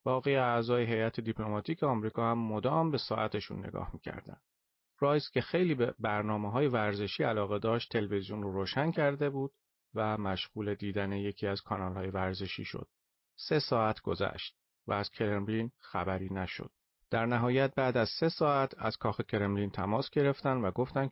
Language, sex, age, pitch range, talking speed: Persian, male, 40-59, 100-130 Hz, 155 wpm